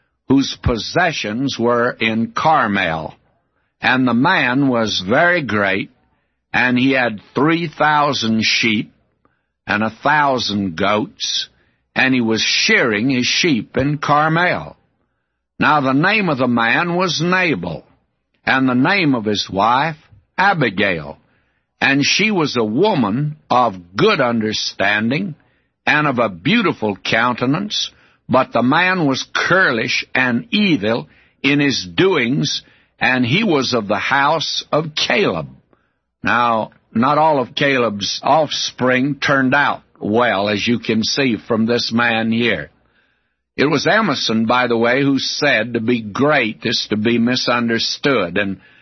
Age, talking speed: 60-79, 130 wpm